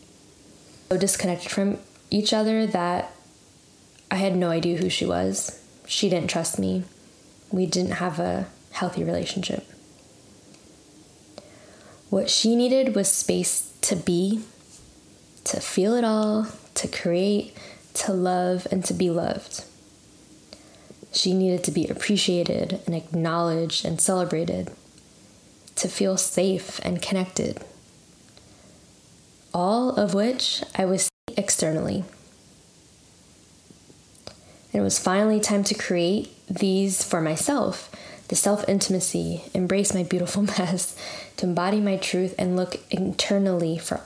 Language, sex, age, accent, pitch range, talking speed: English, female, 10-29, American, 175-200 Hz, 120 wpm